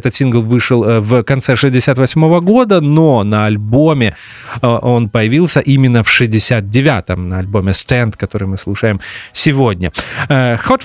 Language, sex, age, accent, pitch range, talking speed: Russian, male, 30-49, native, 115-155 Hz, 125 wpm